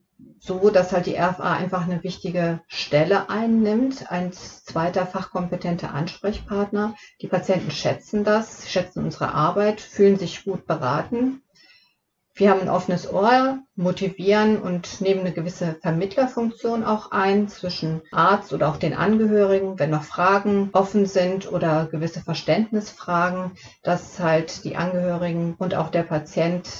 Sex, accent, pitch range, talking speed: female, German, 170-195 Hz, 135 wpm